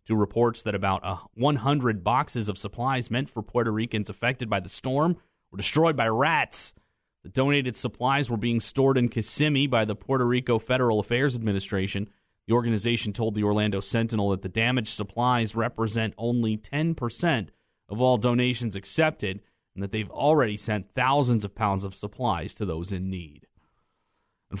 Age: 30-49